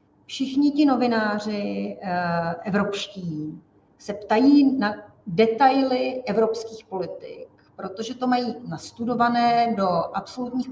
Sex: female